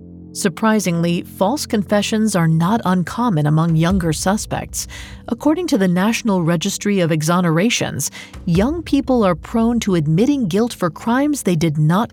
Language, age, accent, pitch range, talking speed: English, 40-59, American, 170-230 Hz, 140 wpm